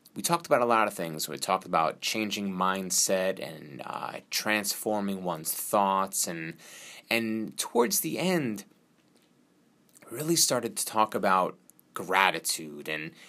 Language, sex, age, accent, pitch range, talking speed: English, male, 30-49, American, 95-125 Hz, 130 wpm